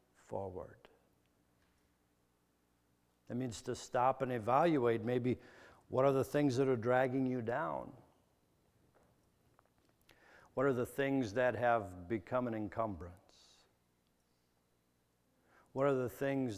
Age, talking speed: 60-79, 110 wpm